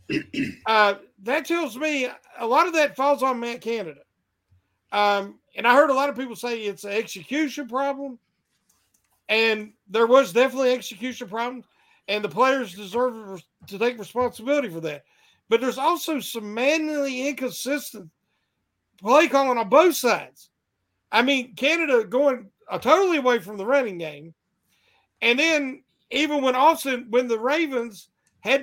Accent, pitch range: American, 225-295 Hz